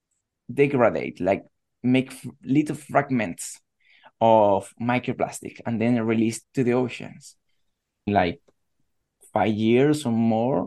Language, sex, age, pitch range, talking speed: English, male, 20-39, 120-150 Hz, 100 wpm